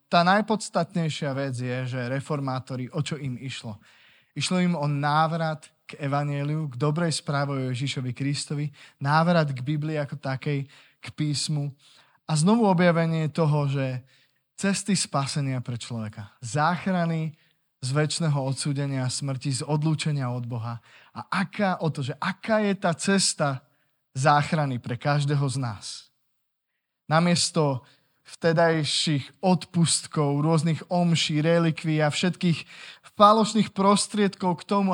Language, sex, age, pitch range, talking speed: Slovak, male, 20-39, 140-175 Hz, 125 wpm